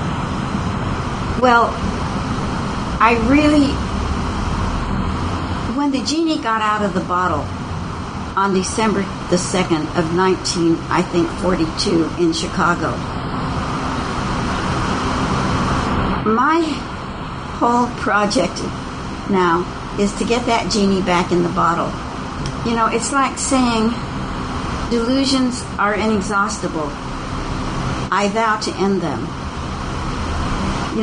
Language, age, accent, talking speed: English, 60-79, American, 95 wpm